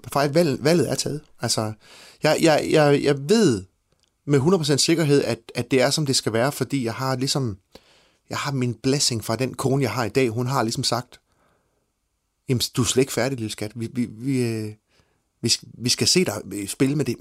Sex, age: male, 30-49